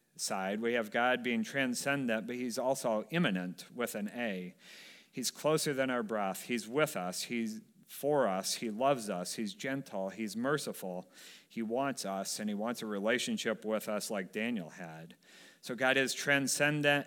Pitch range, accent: 105-135 Hz, American